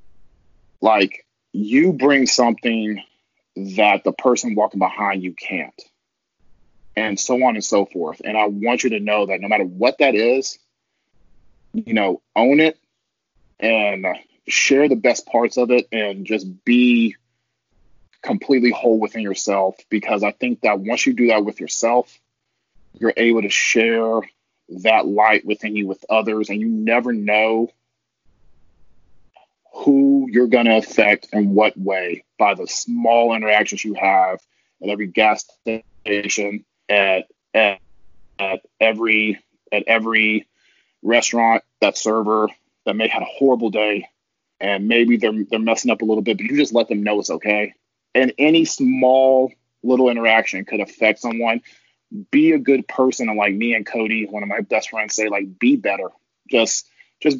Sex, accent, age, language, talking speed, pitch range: male, American, 30-49, English, 155 wpm, 105-120 Hz